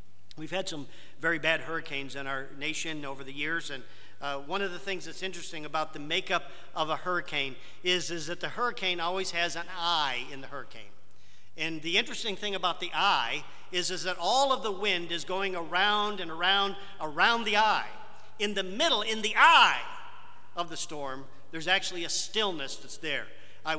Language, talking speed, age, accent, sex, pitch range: English, 190 wpm, 50-69, American, male, 145-180 Hz